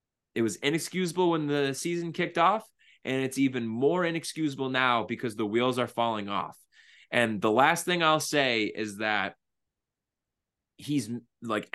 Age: 20-39